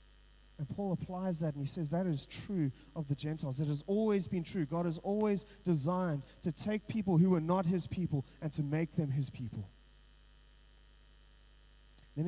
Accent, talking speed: Australian, 180 wpm